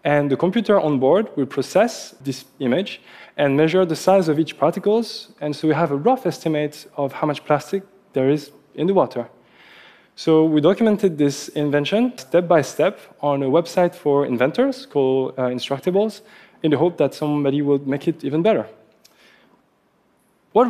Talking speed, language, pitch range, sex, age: 170 wpm, French, 145-185 Hz, male, 20-39